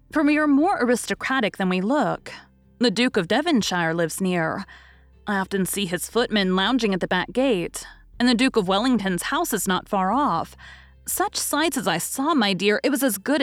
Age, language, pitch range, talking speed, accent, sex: 30-49, English, 185-265 Hz, 200 wpm, American, female